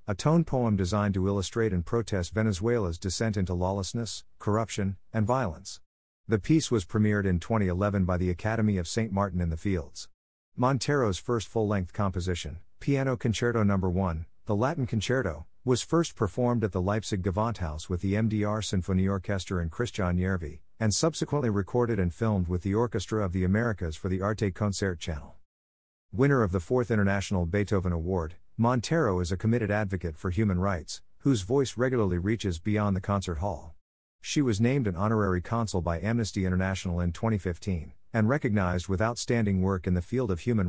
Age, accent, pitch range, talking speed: 50-69, American, 90-110 Hz, 170 wpm